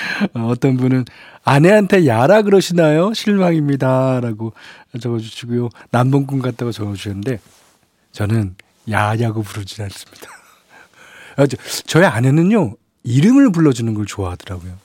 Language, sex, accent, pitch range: Korean, male, native, 110-155 Hz